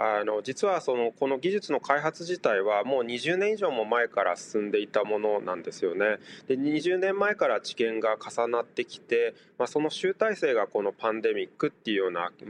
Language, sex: Japanese, male